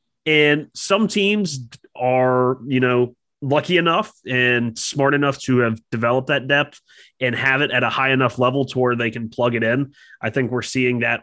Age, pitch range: 20-39, 115-135 Hz